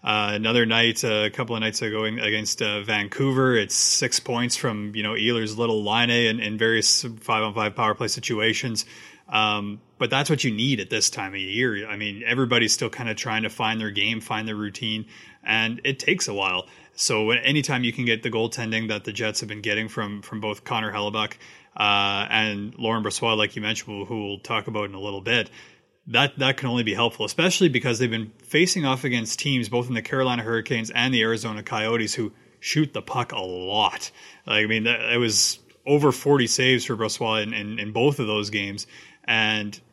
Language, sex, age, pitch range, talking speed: English, male, 30-49, 110-125 Hz, 210 wpm